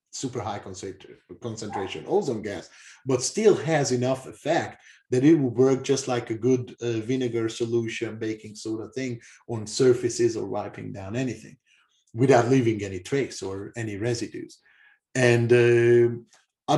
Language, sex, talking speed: English, male, 150 wpm